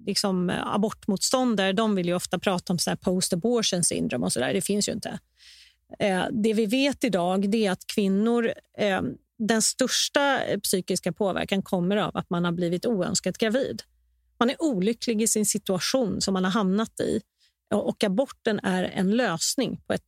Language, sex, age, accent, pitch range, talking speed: Swedish, female, 30-49, native, 180-220 Hz, 165 wpm